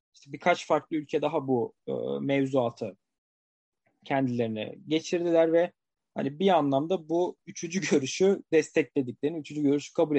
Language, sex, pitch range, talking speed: Turkish, male, 135-180 Hz, 125 wpm